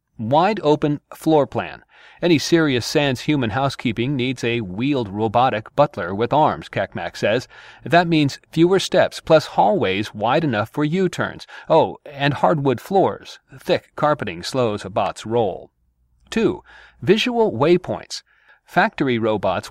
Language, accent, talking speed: English, American, 125 wpm